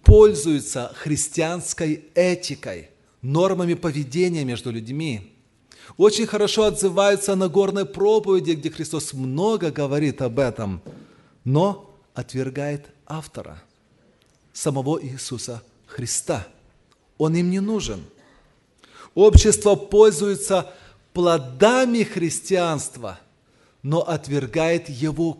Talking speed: 85 wpm